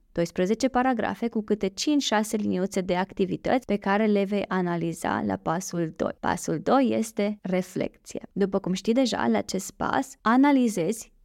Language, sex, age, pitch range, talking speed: Romanian, female, 20-39, 185-225 Hz, 150 wpm